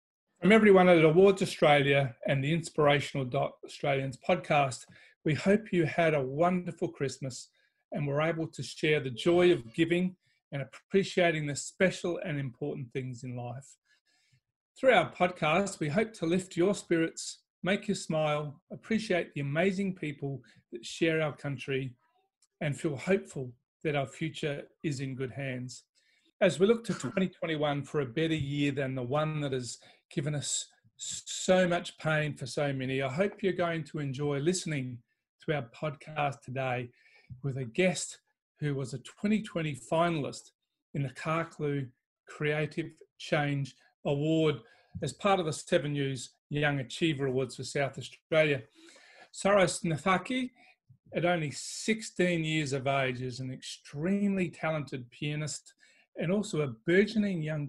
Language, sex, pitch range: English, male, 140-185 Hz